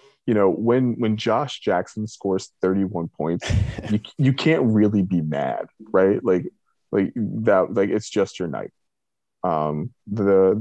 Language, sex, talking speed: English, male, 155 wpm